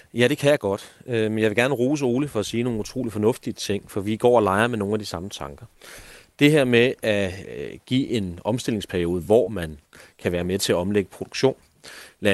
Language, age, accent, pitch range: Danish, 30-49, native, 95-120 Hz